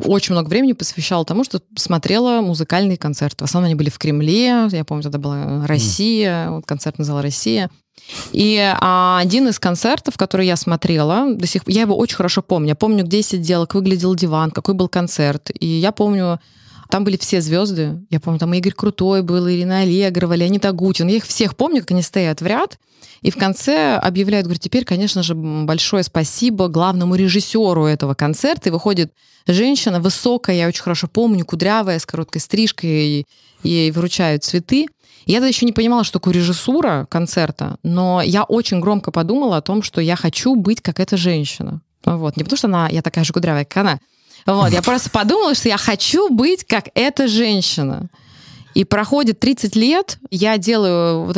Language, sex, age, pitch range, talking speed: Russian, female, 20-39, 165-210 Hz, 180 wpm